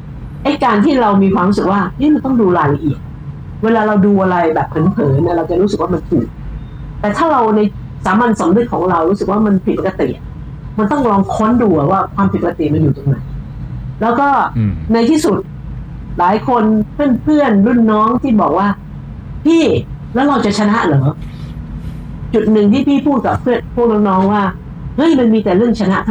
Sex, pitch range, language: female, 170-230 Hz, Thai